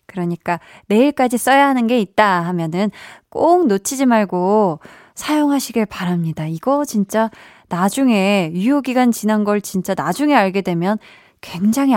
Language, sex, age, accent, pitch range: Korean, female, 20-39, native, 180-240 Hz